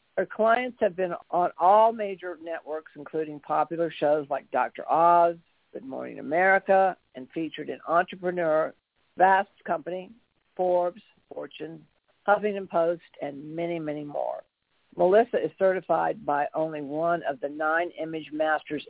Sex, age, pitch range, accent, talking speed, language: female, 60-79, 155-190 Hz, American, 135 wpm, English